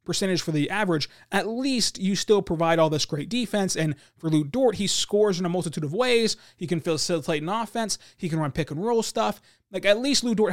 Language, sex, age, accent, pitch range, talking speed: English, male, 20-39, American, 160-205 Hz, 240 wpm